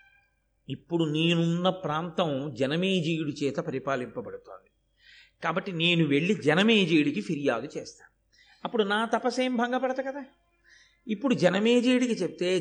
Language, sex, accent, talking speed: Telugu, male, native, 100 wpm